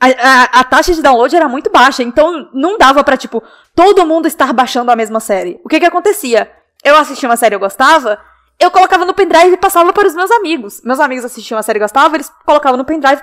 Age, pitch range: 10-29, 245-325 Hz